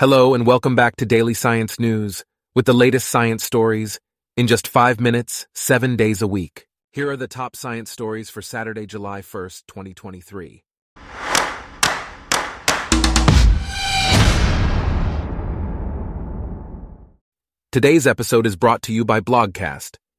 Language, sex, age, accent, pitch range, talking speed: English, male, 30-49, American, 95-115 Hz, 120 wpm